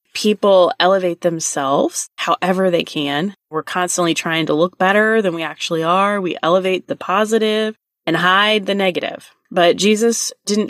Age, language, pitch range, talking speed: 20-39, English, 160-200 Hz, 150 wpm